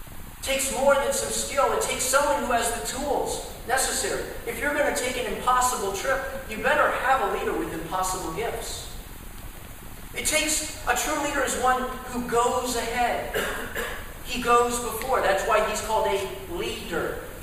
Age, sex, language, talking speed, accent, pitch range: 40-59, male, English, 165 wpm, American, 180-255 Hz